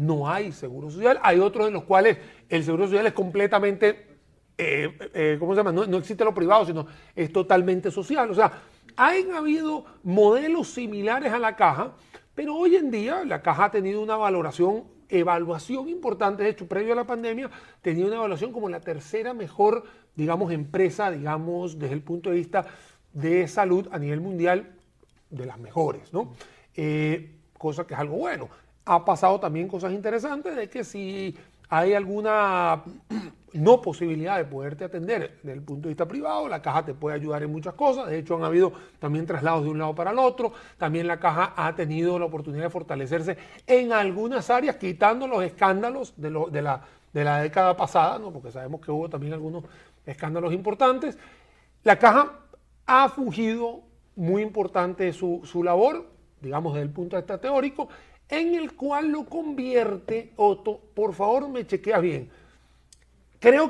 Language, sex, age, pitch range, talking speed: Spanish, male, 40-59, 165-225 Hz, 170 wpm